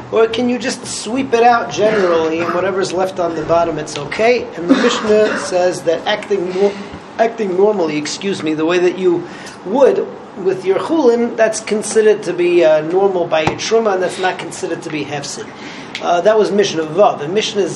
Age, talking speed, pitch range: 40-59, 195 wpm, 175-215 Hz